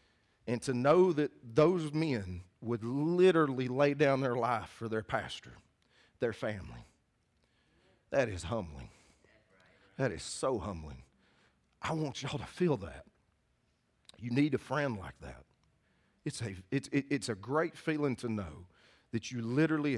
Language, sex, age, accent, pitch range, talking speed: English, male, 40-59, American, 105-140 Hz, 145 wpm